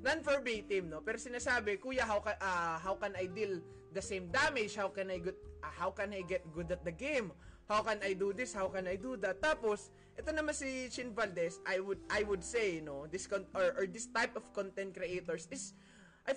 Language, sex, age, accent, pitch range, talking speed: Filipino, male, 20-39, native, 175-230 Hz, 235 wpm